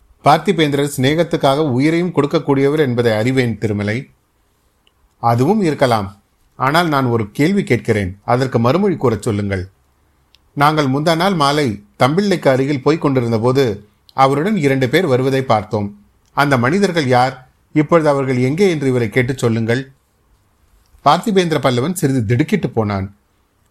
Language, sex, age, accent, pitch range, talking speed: Tamil, male, 40-59, native, 115-155 Hz, 110 wpm